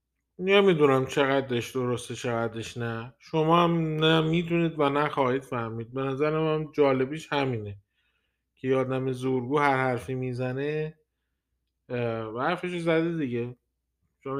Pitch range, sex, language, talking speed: 125-150 Hz, male, Persian, 125 wpm